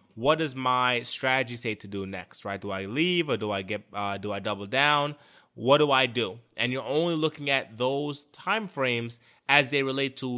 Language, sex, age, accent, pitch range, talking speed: English, male, 20-39, American, 115-145 Hz, 210 wpm